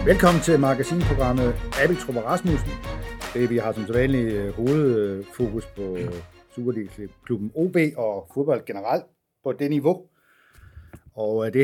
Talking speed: 125 wpm